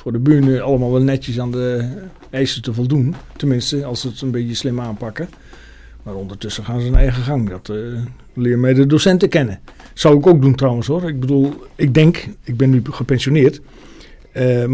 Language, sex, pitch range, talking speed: Dutch, male, 130-165 Hz, 195 wpm